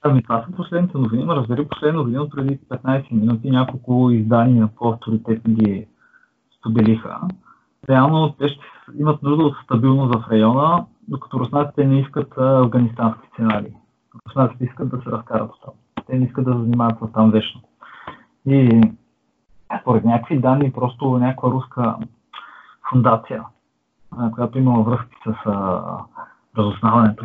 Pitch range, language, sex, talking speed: 115-140 Hz, Bulgarian, male, 130 wpm